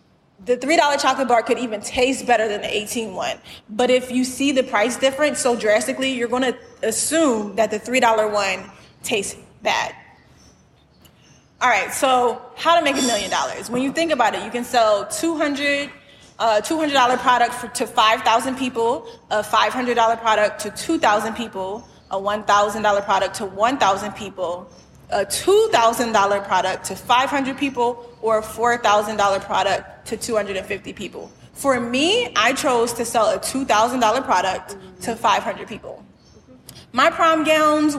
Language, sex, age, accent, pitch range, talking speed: English, female, 20-39, American, 215-275 Hz, 150 wpm